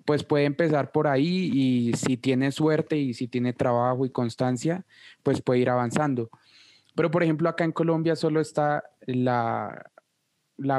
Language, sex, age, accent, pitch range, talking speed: Spanish, male, 20-39, Colombian, 130-155 Hz, 160 wpm